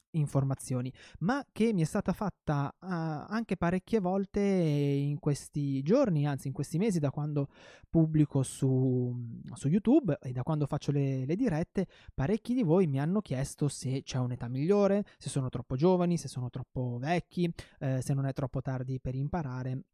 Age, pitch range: 20-39, 135-175 Hz